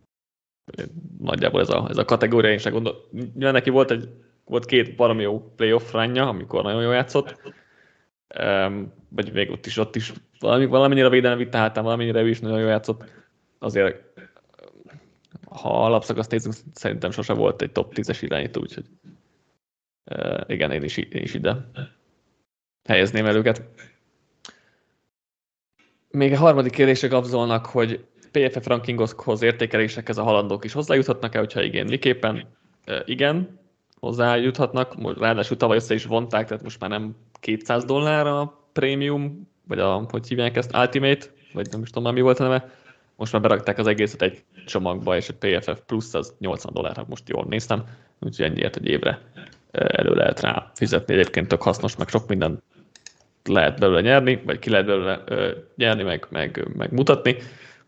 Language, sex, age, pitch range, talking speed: Hungarian, male, 20-39, 110-130 Hz, 160 wpm